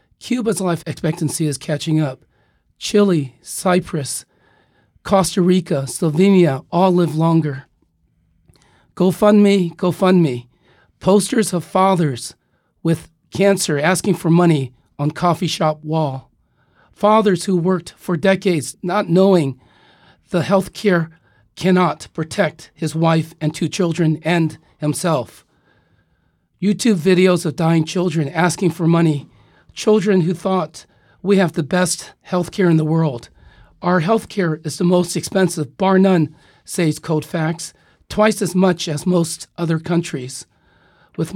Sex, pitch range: male, 160-190 Hz